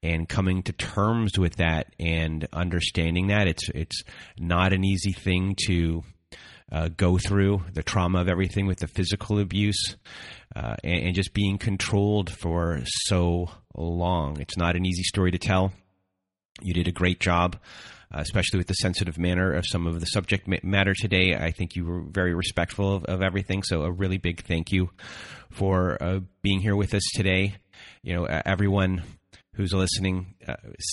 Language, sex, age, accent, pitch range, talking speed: English, male, 30-49, American, 85-100 Hz, 175 wpm